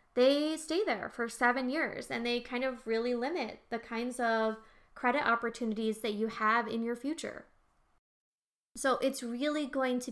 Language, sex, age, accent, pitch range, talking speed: English, female, 20-39, American, 220-260 Hz, 165 wpm